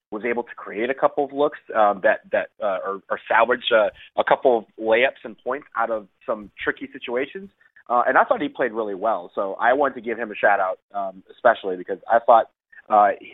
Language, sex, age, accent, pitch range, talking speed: English, male, 30-49, American, 110-145 Hz, 220 wpm